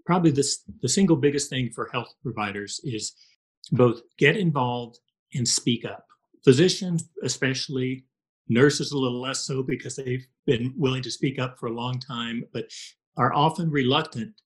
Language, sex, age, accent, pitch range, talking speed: English, male, 40-59, American, 120-155 Hz, 155 wpm